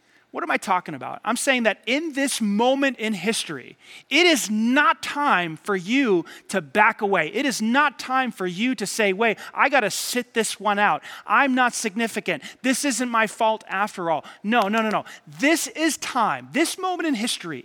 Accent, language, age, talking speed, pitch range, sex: American, English, 30-49, 195 wpm, 180-230 Hz, male